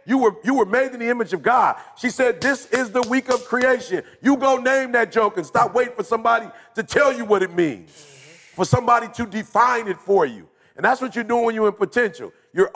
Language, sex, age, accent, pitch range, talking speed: English, male, 40-59, American, 185-235 Hz, 240 wpm